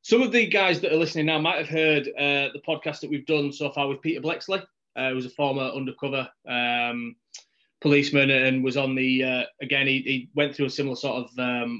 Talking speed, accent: 230 wpm, British